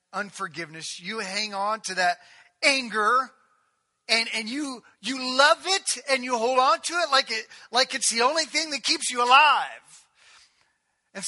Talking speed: 165 wpm